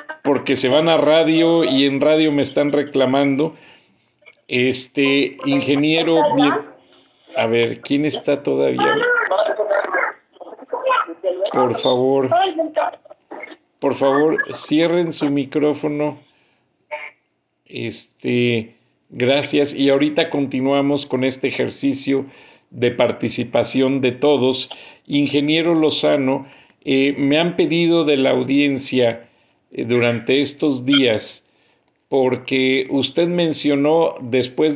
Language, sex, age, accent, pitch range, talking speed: Spanish, male, 50-69, Mexican, 125-150 Hz, 90 wpm